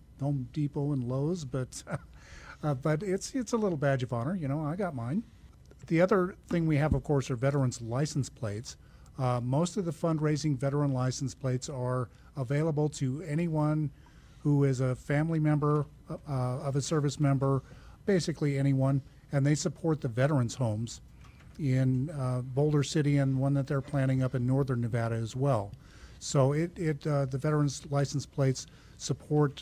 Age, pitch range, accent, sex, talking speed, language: 50-69, 125-150 Hz, American, male, 165 wpm, English